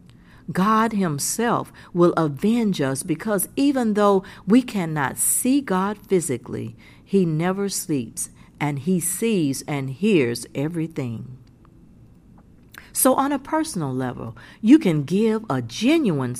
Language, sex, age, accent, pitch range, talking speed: English, female, 50-69, American, 140-215 Hz, 115 wpm